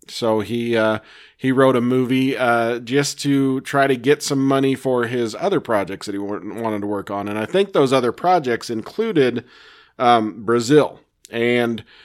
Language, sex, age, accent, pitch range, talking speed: English, male, 40-59, American, 115-135 Hz, 175 wpm